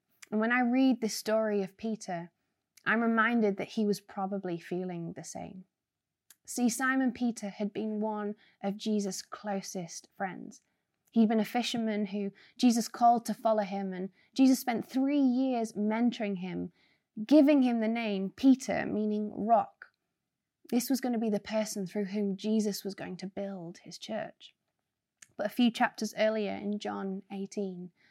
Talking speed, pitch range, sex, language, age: 160 wpm, 195-225 Hz, female, English, 20-39